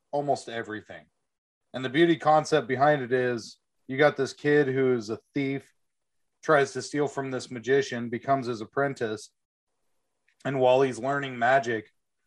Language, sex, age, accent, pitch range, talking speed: English, male, 30-49, American, 115-140 Hz, 150 wpm